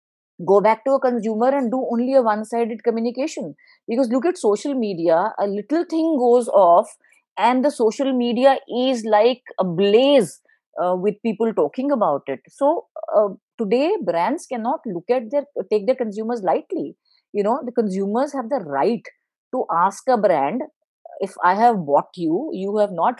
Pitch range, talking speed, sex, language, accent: 205-275 Hz, 175 wpm, female, English, Indian